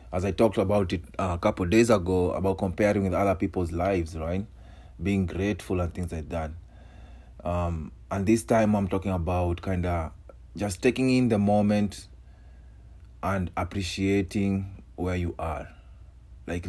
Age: 30-49